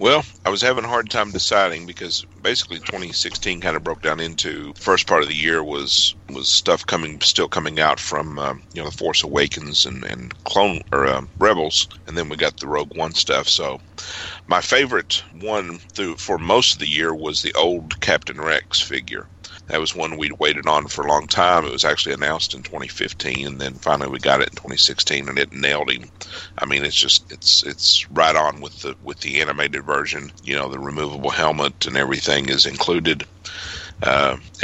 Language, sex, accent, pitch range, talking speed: English, male, American, 75-90 Hz, 205 wpm